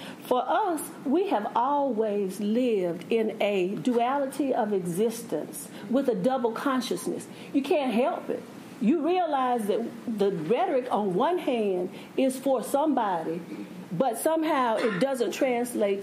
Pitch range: 225-285 Hz